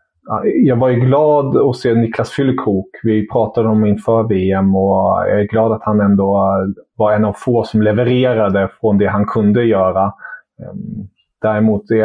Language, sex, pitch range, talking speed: English, male, 105-115 Hz, 160 wpm